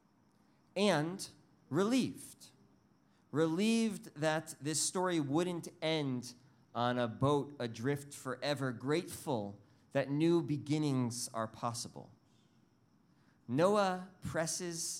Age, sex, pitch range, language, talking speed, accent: 40-59, male, 135-185 Hz, English, 85 wpm, American